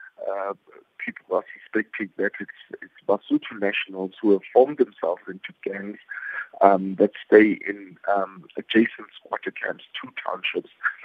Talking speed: 135 wpm